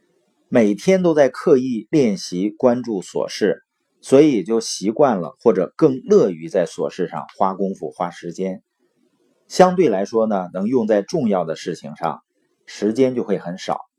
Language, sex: Chinese, male